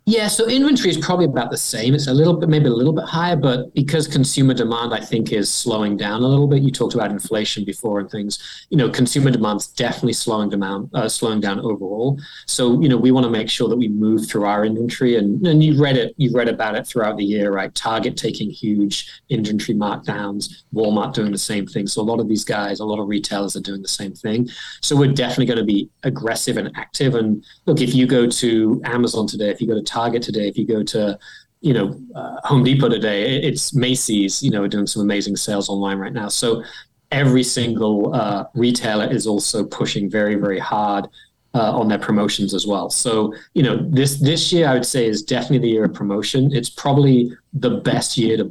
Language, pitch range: English, 105-130 Hz